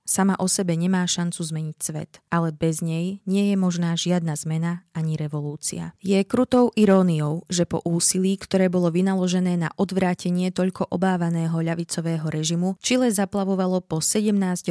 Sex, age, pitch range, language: female, 20-39, 165-190 Hz, Slovak